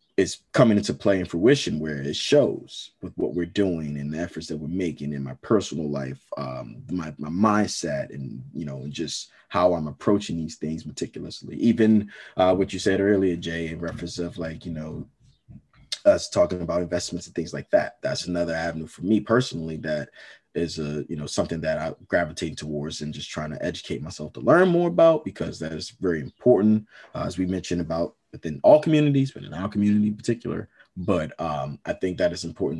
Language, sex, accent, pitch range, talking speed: English, male, American, 80-105 Hz, 205 wpm